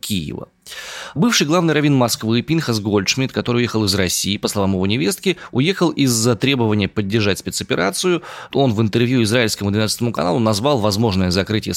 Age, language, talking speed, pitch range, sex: 20-39, Russian, 155 wpm, 100-140 Hz, male